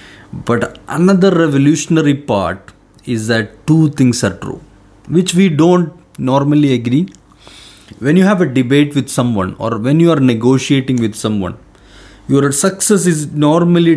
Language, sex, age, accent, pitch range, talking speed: English, male, 30-49, Indian, 115-155 Hz, 140 wpm